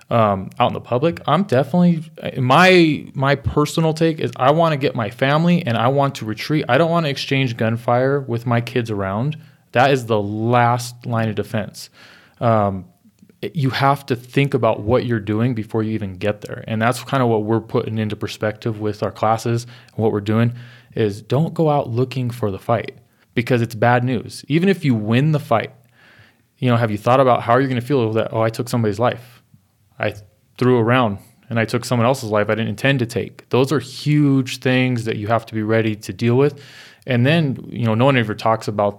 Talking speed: 220 wpm